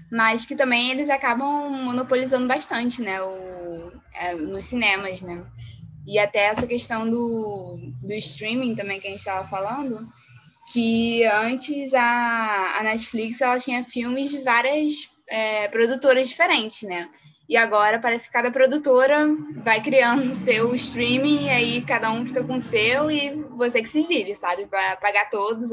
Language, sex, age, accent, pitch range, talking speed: Portuguese, female, 10-29, Brazilian, 195-250 Hz, 155 wpm